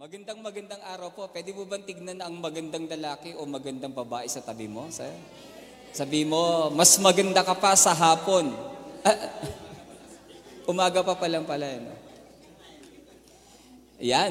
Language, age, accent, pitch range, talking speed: Filipino, 20-39, native, 150-190 Hz, 125 wpm